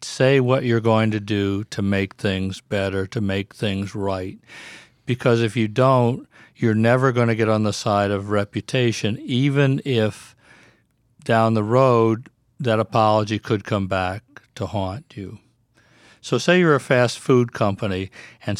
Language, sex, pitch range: English, male, 105-125 Hz